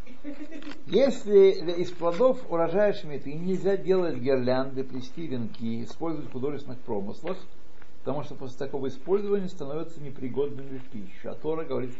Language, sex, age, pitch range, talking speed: Russian, male, 60-79, 130-185 Hz, 125 wpm